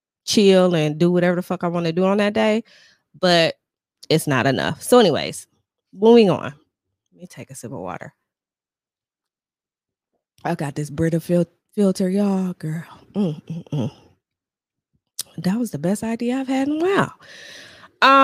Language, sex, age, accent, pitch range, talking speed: English, female, 20-39, American, 155-215 Hz, 160 wpm